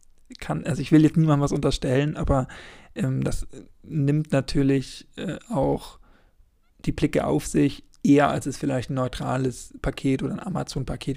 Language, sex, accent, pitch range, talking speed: German, male, German, 130-150 Hz, 150 wpm